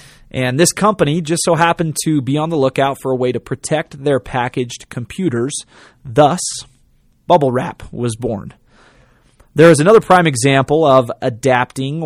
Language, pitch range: English, 125-160 Hz